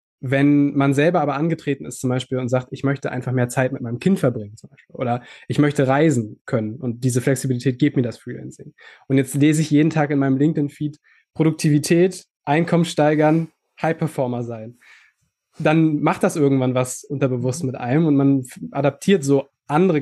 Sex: male